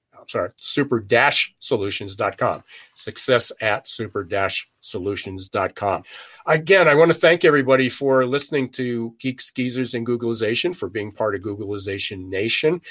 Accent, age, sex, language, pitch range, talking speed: American, 50-69, male, English, 110-135 Hz, 115 wpm